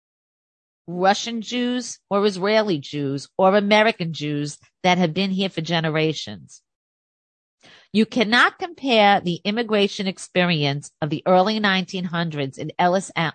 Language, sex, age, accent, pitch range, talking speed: English, female, 40-59, American, 165-220 Hz, 115 wpm